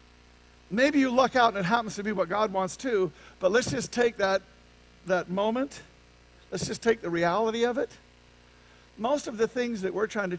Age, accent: 50-69, American